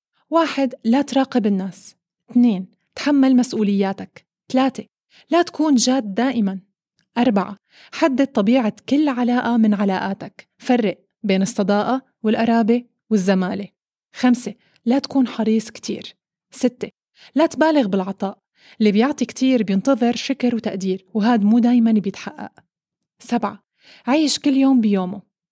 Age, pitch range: 20-39, 200-255 Hz